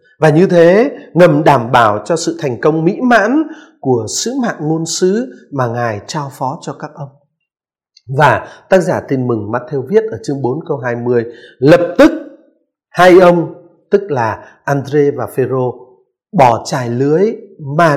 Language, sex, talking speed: Vietnamese, male, 165 wpm